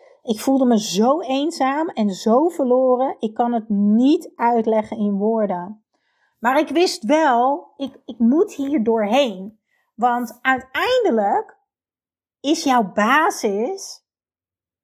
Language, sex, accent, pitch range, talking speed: Dutch, female, Dutch, 210-275 Hz, 115 wpm